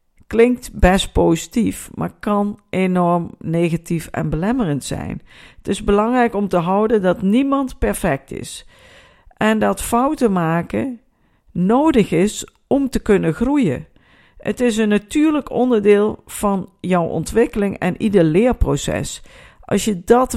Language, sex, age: Dutch, female, 50-69